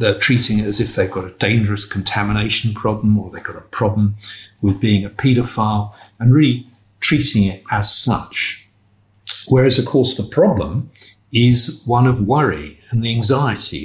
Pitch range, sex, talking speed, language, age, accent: 100-120 Hz, male, 165 wpm, English, 50-69, British